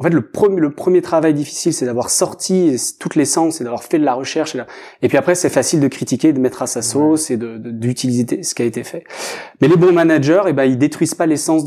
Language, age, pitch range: French, 30-49, 125-165 Hz